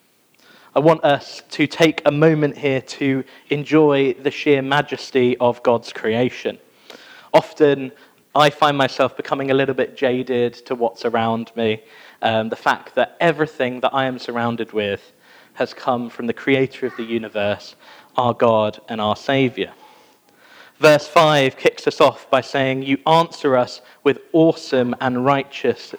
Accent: British